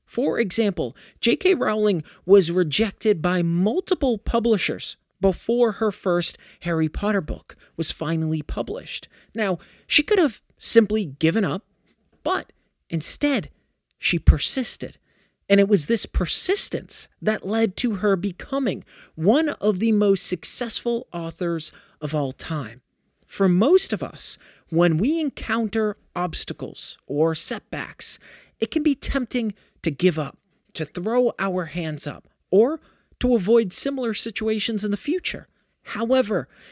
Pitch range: 170-230 Hz